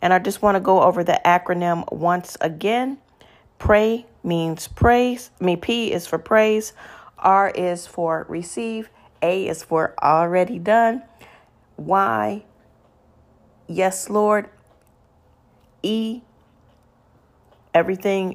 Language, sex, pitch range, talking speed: English, female, 160-190 Hz, 110 wpm